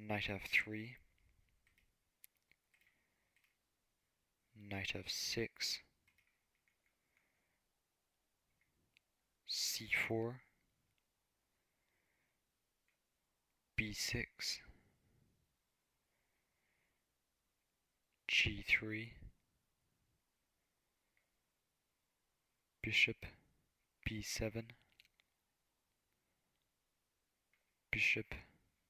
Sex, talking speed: male, 35 wpm